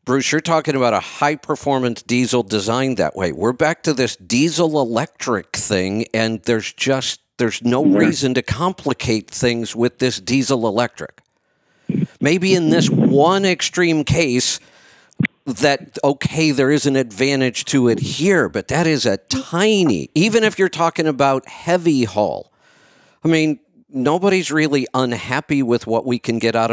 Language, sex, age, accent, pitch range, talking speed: English, male, 50-69, American, 120-160 Hz, 155 wpm